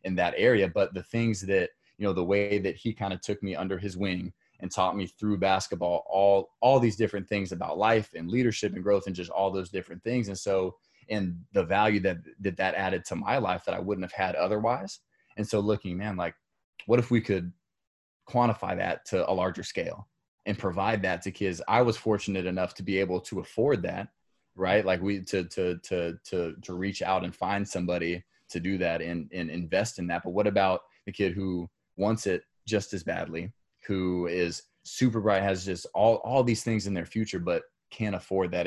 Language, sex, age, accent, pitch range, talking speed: English, male, 20-39, American, 90-105 Hz, 215 wpm